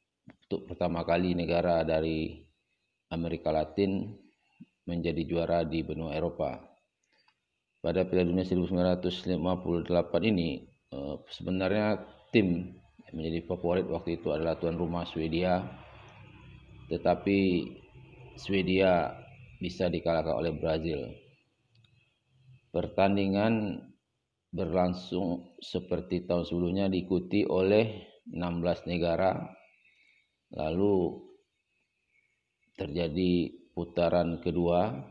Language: Indonesian